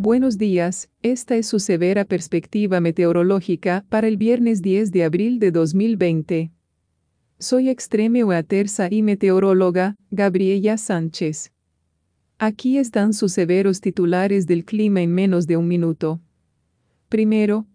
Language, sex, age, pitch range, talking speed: English, female, 40-59, 175-215 Hz, 120 wpm